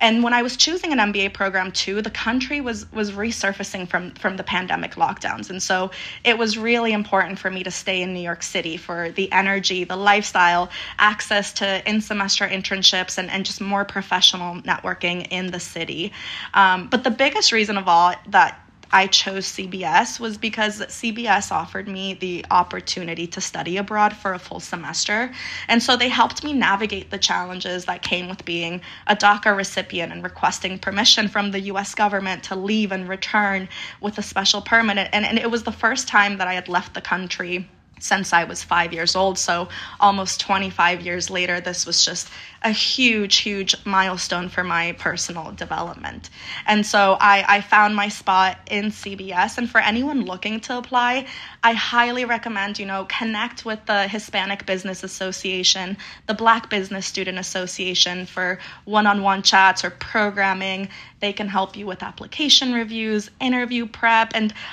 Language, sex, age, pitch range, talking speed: English, female, 20-39, 185-215 Hz, 175 wpm